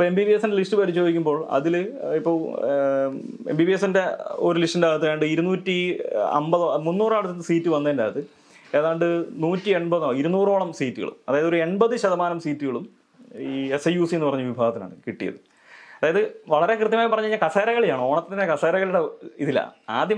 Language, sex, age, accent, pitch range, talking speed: English, male, 30-49, Indian, 145-195 Hz, 60 wpm